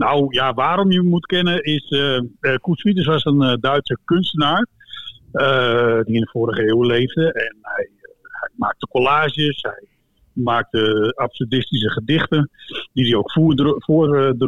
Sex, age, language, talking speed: male, 50-69, Dutch, 160 wpm